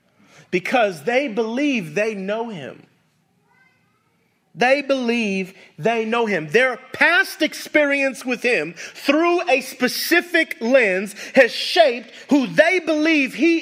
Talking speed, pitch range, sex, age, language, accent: 115 wpm, 225-345 Hz, male, 30-49, English, American